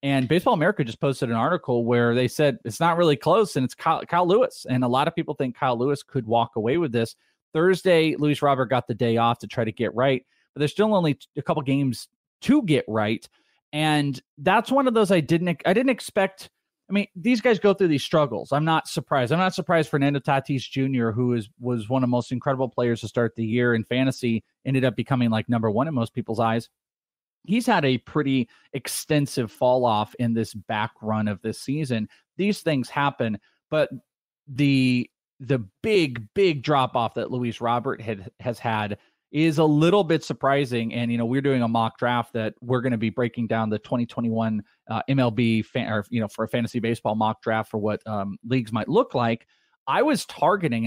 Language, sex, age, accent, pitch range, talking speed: English, male, 30-49, American, 115-150 Hz, 215 wpm